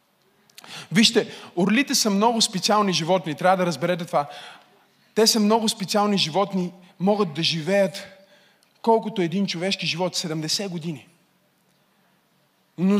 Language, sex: Bulgarian, male